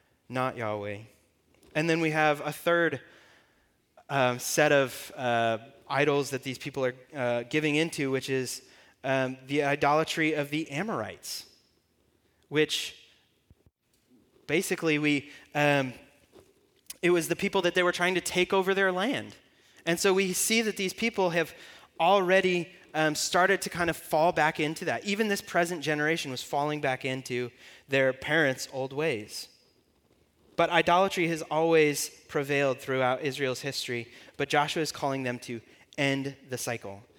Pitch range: 135-190 Hz